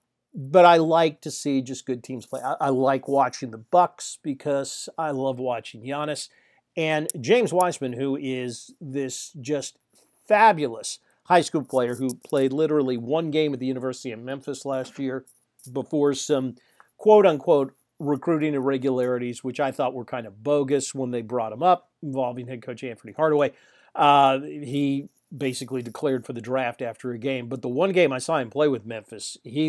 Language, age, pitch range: English, 40-59, 130-160 Hz